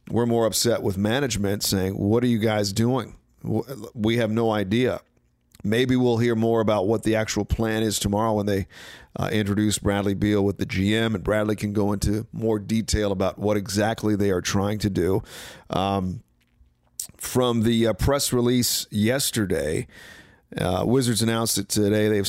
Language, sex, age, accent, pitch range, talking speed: English, male, 40-59, American, 100-115 Hz, 170 wpm